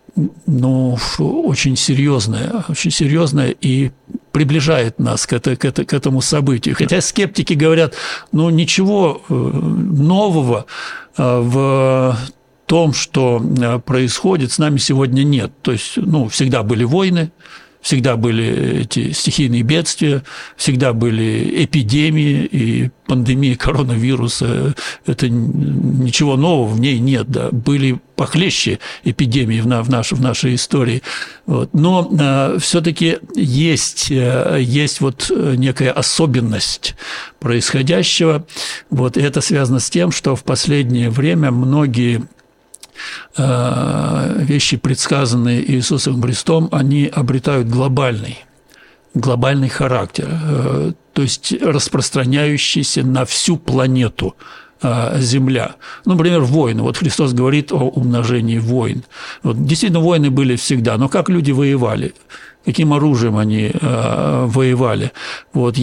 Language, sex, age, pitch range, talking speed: Russian, male, 60-79, 125-155 Hz, 110 wpm